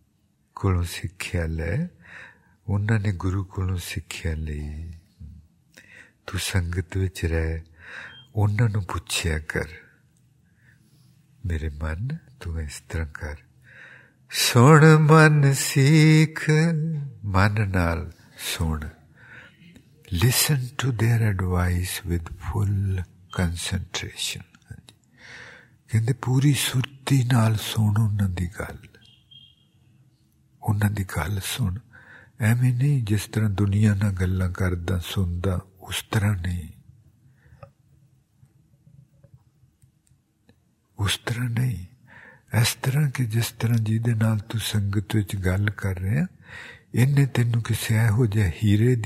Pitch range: 95-125 Hz